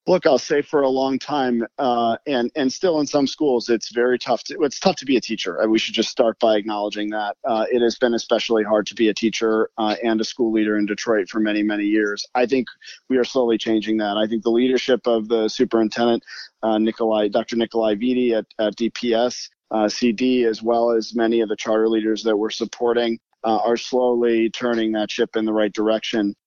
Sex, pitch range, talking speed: male, 110-120 Hz, 220 wpm